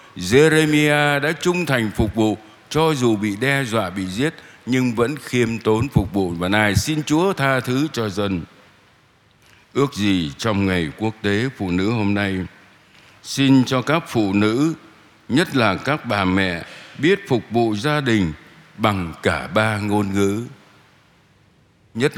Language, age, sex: Vietnamese, 60-79, male